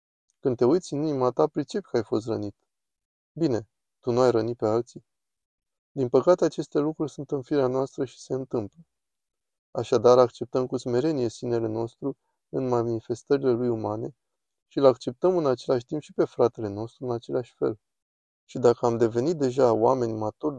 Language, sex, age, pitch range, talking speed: Romanian, male, 20-39, 115-145 Hz, 170 wpm